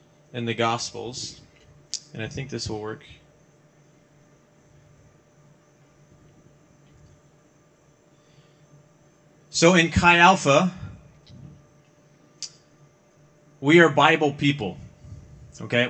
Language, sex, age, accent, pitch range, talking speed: English, male, 30-49, American, 125-150 Hz, 70 wpm